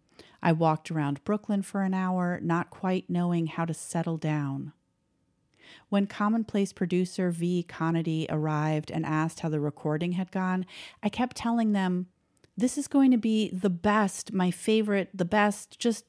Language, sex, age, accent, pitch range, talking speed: English, female, 40-59, American, 160-190 Hz, 160 wpm